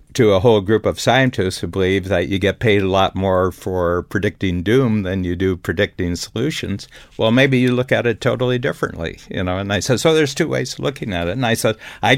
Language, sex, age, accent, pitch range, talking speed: English, male, 60-79, American, 95-120 Hz, 235 wpm